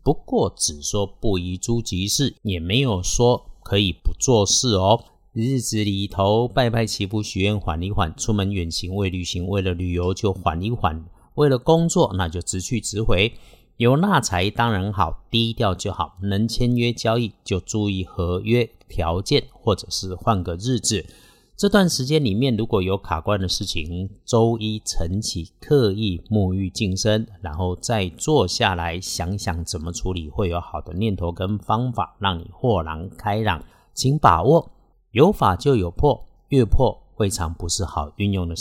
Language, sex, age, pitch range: Chinese, male, 50-69, 90-115 Hz